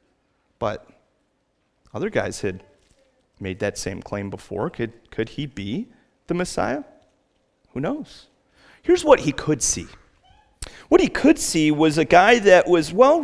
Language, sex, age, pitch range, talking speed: English, male, 30-49, 135-225 Hz, 145 wpm